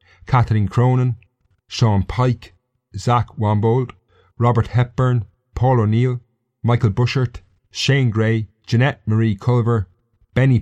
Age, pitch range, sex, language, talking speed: 30-49, 95-120 Hz, male, English, 100 wpm